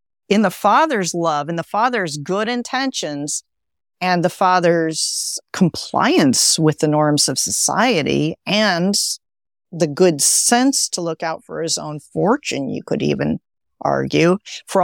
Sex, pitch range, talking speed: female, 150-190 Hz, 140 wpm